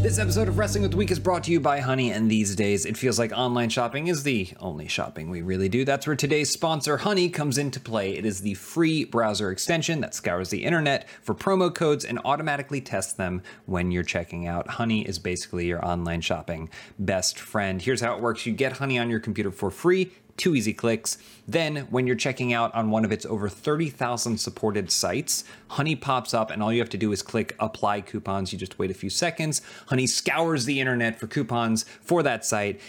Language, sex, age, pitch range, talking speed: English, male, 30-49, 100-135 Hz, 220 wpm